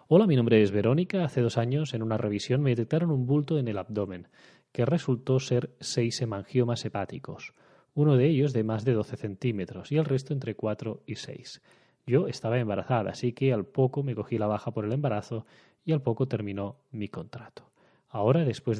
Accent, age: Spanish, 20-39